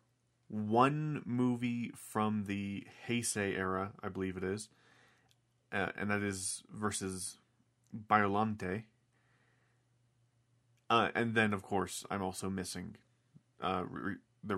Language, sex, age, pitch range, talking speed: English, male, 30-49, 100-120 Hz, 110 wpm